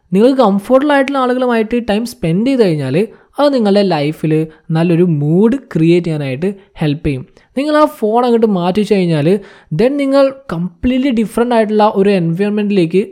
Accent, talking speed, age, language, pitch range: native, 140 wpm, 20-39, Malayalam, 165-240 Hz